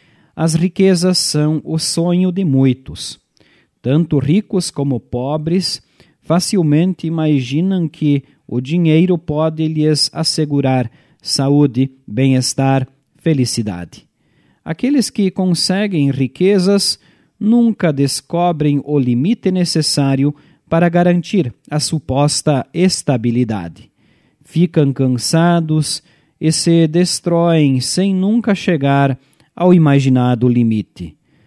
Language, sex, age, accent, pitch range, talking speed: Portuguese, male, 40-59, Brazilian, 130-170 Hz, 90 wpm